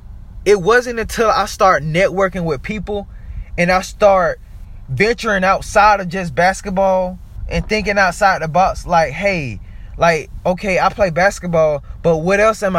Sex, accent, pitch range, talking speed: male, American, 155-200 Hz, 150 wpm